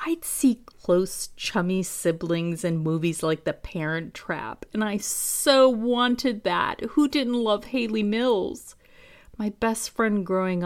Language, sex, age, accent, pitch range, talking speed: English, female, 40-59, American, 170-240 Hz, 140 wpm